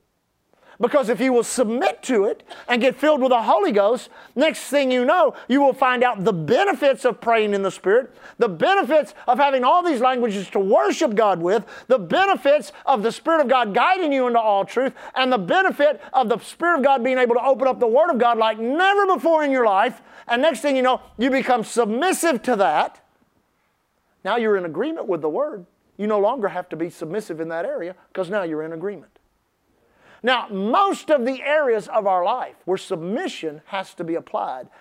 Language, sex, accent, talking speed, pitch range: English, male, American, 210 wpm, 210-290 Hz